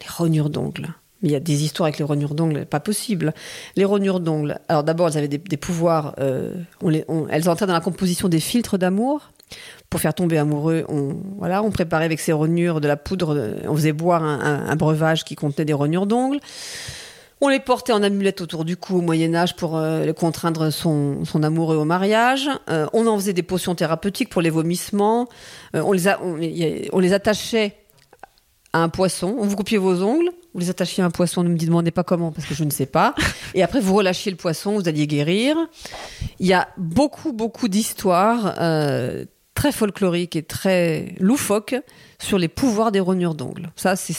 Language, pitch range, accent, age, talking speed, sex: French, 160-205 Hz, French, 40-59, 210 wpm, female